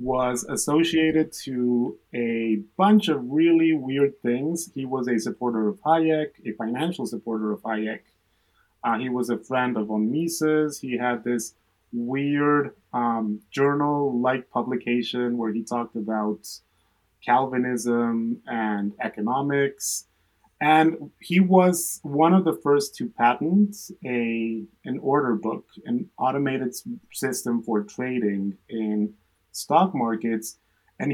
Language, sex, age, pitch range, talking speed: English, male, 30-49, 110-140 Hz, 120 wpm